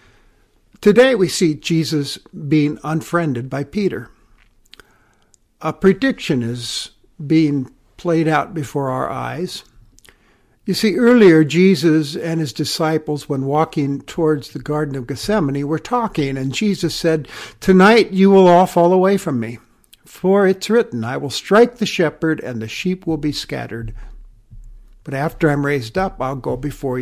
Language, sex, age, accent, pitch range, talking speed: English, male, 60-79, American, 140-190 Hz, 145 wpm